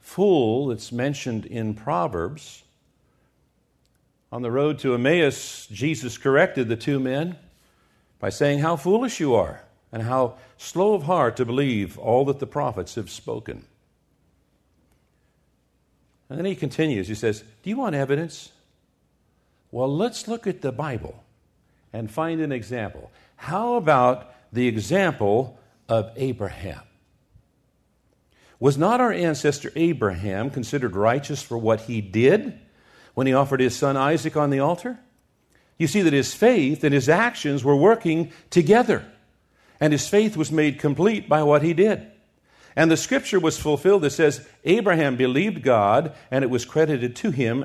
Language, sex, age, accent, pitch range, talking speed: English, male, 50-69, American, 120-165 Hz, 145 wpm